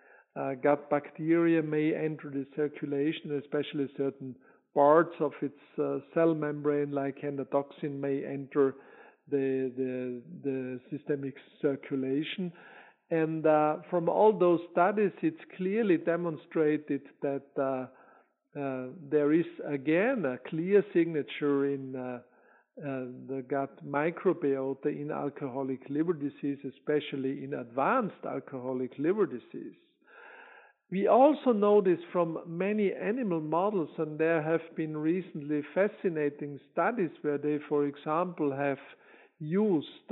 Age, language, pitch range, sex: 50-69, English, 140-175 Hz, male